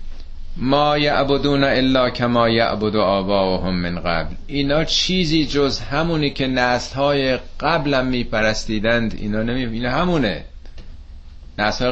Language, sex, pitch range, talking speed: Persian, male, 85-135 Hz, 110 wpm